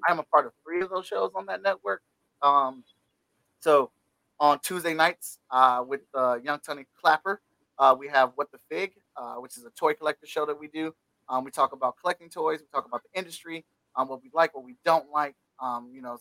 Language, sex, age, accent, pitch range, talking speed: English, male, 30-49, American, 130-160 Hz, 220 wpm